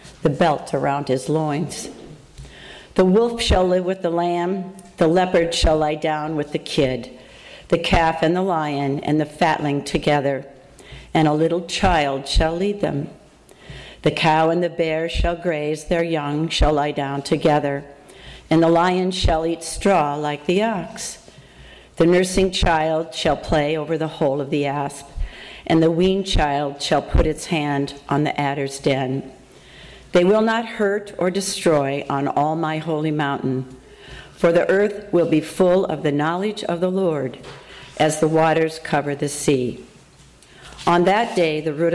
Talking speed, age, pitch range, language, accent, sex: 165 wpm, 50-69, 145-175 Hz, English, American, female